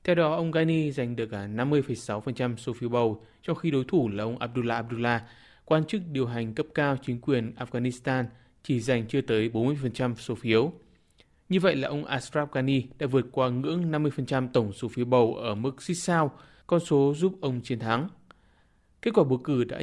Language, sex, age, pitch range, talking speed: Vietnamese, male, 20-39, 115-145 Hz, 195 wpm